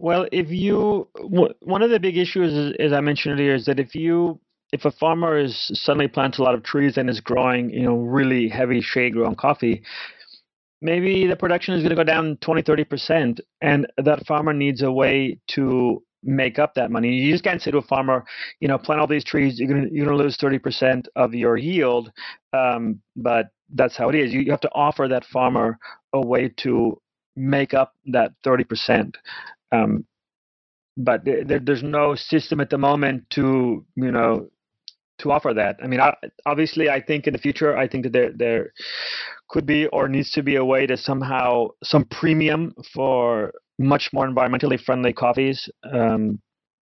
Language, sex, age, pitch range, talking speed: English, male, 30-49, 125-150 Hz, 190 wpm